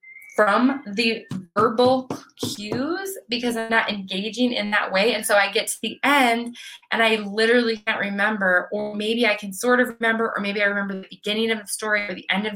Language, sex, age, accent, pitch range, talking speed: English, female, 20-39, American, 185-225 Hz, 205 wpm